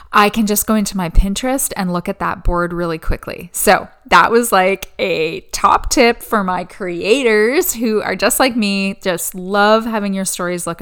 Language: English